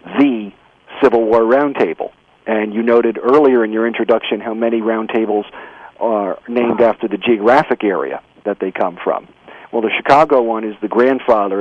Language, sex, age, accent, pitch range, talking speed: English, male, 50-69, American, 120-160 Hz, 160 wpm